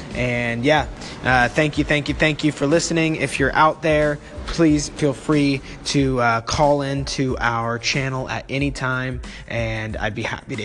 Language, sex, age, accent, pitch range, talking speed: English, male, 20-39, American, 120-150 Hz, 185 wpm